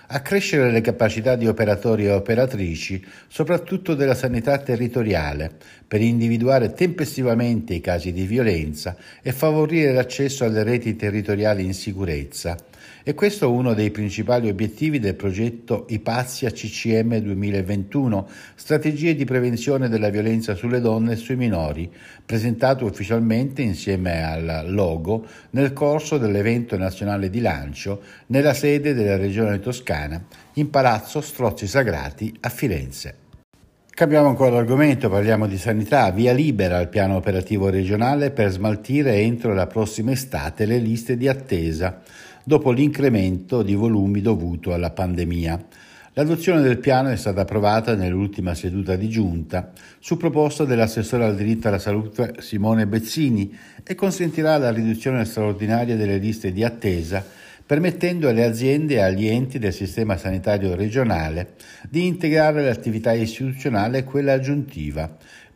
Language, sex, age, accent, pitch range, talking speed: Italian, male, 60-79, native, 100-130 Hz, 130 wpm